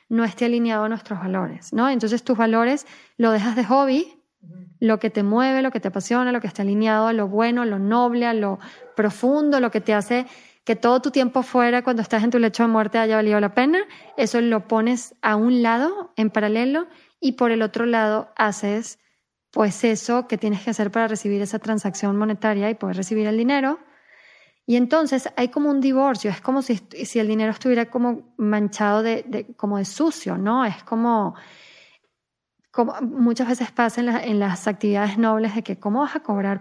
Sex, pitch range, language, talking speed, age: female, 215-250 Hz, Spanish, 205 wpm, 20-39